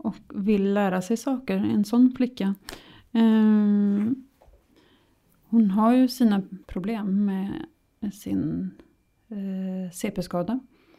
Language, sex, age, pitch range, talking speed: Swedish, female, 30-49, 195-235 Hz, 105 wpm